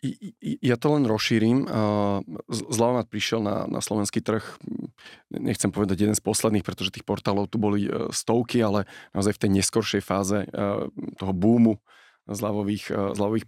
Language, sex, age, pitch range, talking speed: Slovak, male, 30-49, 100-115 Hz, 140 wpm